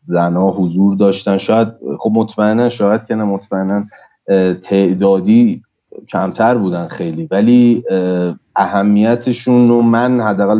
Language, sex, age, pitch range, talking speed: Persian, male, 30-49, 95-120 Hz, 100 wpm